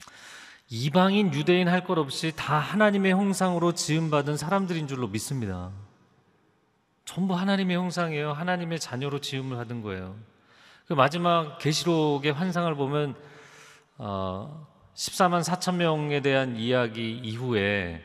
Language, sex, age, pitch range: Korean, male, 40-59, 120-175 Hz